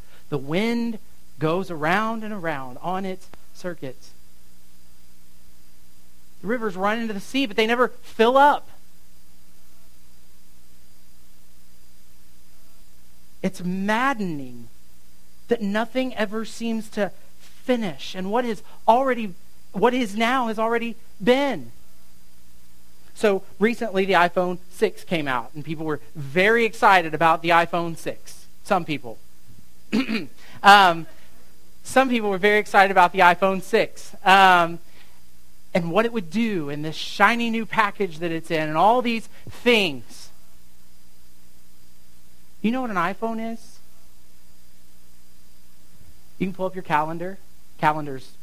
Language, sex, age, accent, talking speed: English, male, 40-59, American, 120 wpm